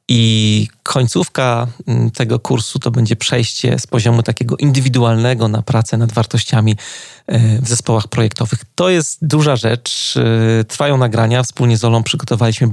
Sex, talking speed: male, 130 wpm